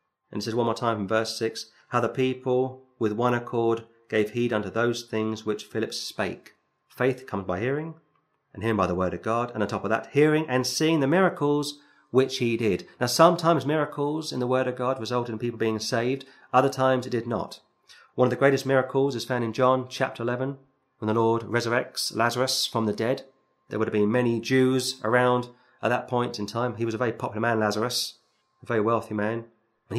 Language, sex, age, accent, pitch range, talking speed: English, male, 30-49, British, 110-130 Hz, 215 wpm